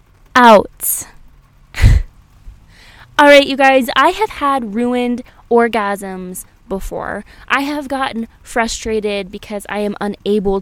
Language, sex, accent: English, female, American